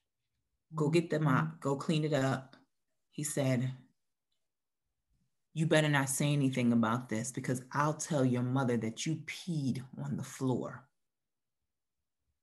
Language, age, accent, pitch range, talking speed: English, 30-49, American, 130-160 Hz, 135 wpm